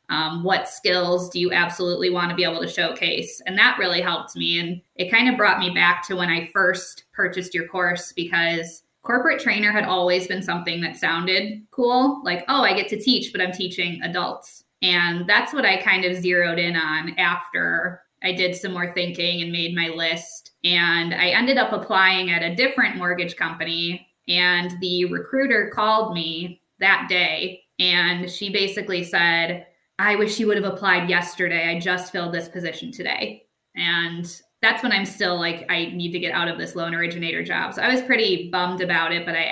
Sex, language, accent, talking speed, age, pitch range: female, English, American, 195 wpm, 20-39, 170-195 Hz